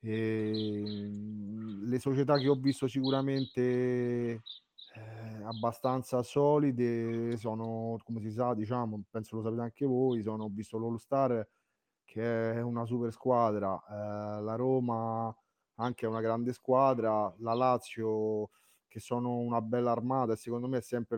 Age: 30-49